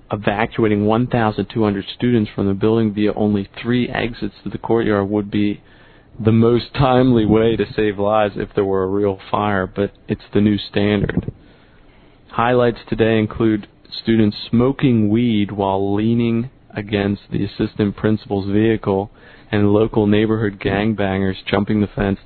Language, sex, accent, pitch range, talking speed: English, male, American, 100-110 Hz, 145 wpm